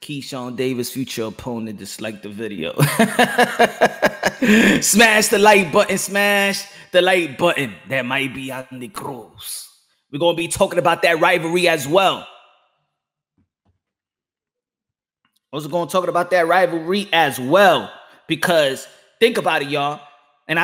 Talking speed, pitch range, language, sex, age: 135 wpm, 155-200 Hz, English, male, 20-39